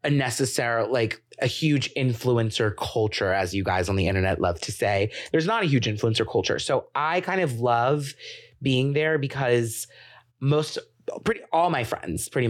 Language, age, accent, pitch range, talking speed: English, 30-49, American, 105-140 Hz, 175 wpm